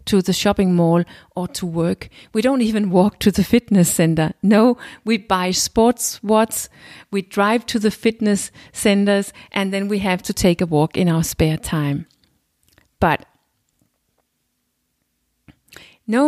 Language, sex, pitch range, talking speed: English, female, 180-220 Hz, 145 wpm